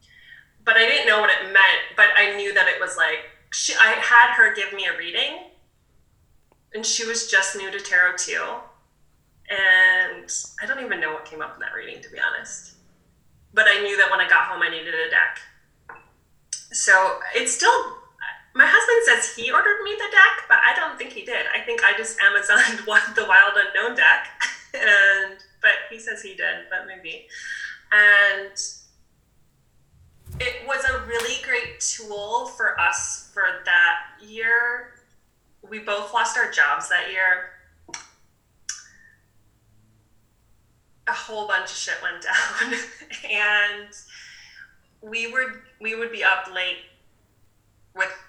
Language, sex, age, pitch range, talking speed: English, female, 20-39, 180-275 Hz, 155 wpm